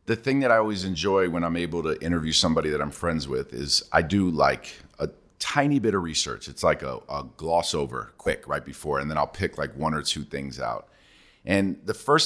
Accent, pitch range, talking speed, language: American, 80-100 Hz, 230 wpm, English